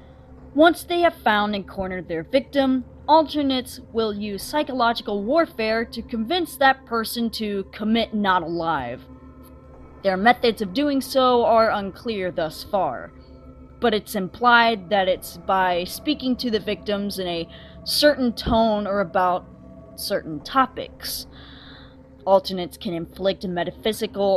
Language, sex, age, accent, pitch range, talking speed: English, female, 20-39, American, 170-235 Hz, 130 wpm